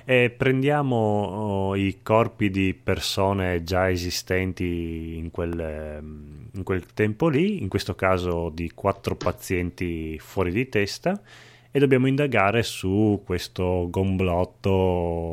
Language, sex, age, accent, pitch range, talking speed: Italian, male, 30-49, native, 90-110 Hz, 115 wpm